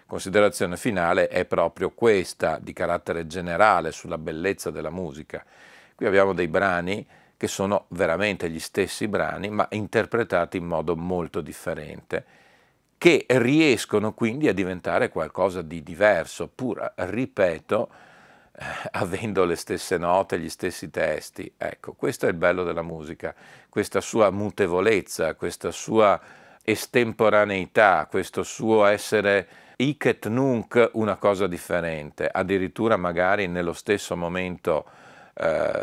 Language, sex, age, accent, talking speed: Italian, male, 50-69, native, 125 wpm